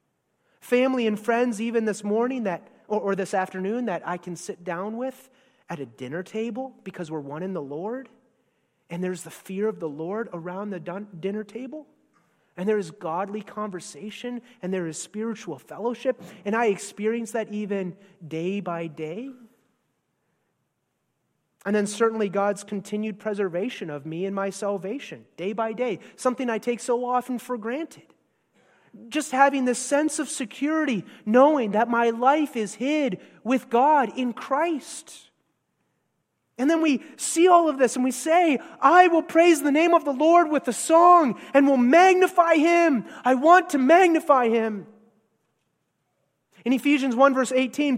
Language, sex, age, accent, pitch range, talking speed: English, male, 30-49, American, 195-265 Hz, 160 wpm